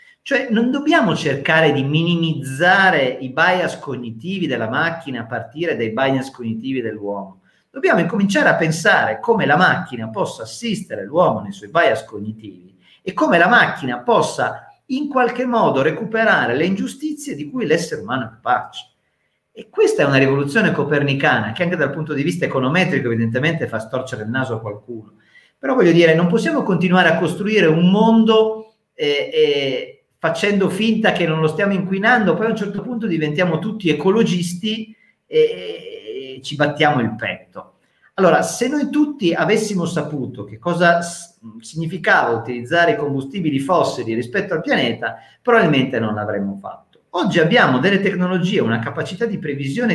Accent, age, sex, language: native, 40-59, male, Italian